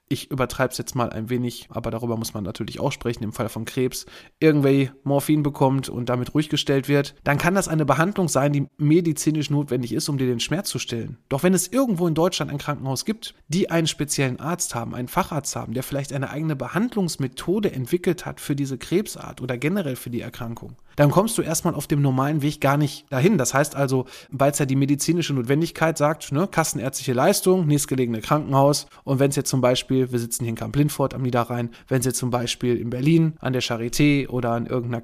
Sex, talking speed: male, 215 wpm